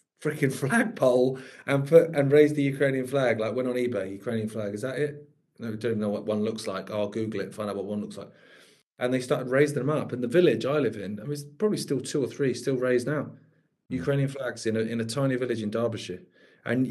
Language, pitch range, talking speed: English, 110-140 Hz, 245 wpm